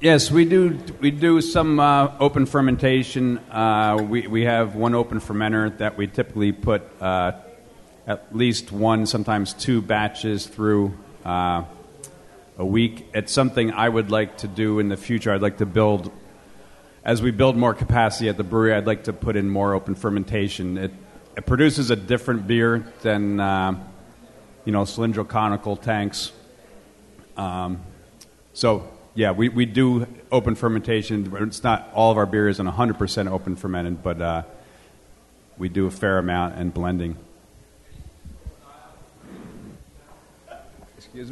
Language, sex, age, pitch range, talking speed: English, male, 40-59, 100-125 Hz, 150 wpm